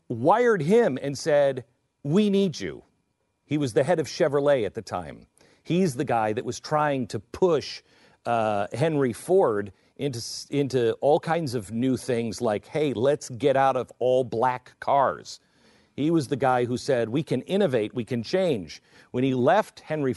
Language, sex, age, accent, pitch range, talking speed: English, male, 50-69, American, 115-160 Hz, 175 wpm